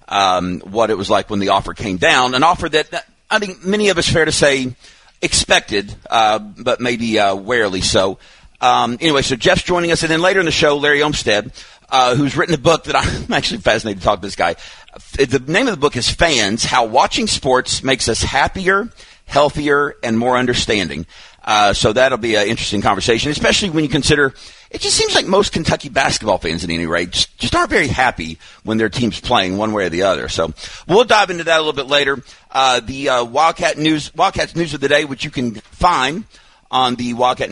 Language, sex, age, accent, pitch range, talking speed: English, male, 40-59, American, 115-155 Hz, 215 wpm